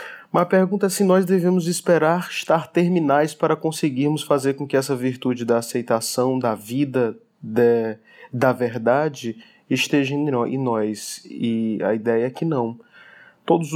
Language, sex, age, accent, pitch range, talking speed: Portuguese, male, 20-39, Brazilian, 120-150 Hz, 145 wpm